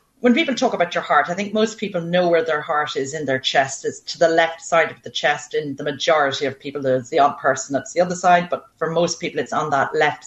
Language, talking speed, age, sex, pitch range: English, 275 wpm, 40-59, female, 150-195 Hz